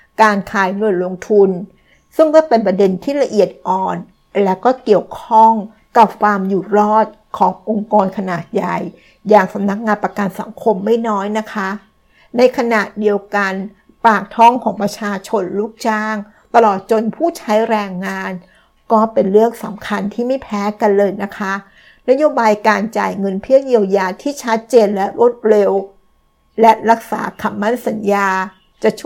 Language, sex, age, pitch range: Thai, female, 60-79, 195-225 Hz